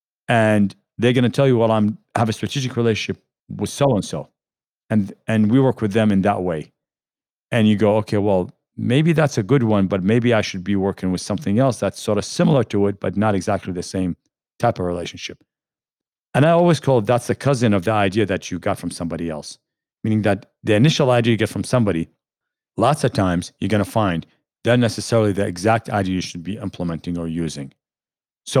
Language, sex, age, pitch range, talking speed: English, male, 50-69, 95-125 Hz, 210 wpm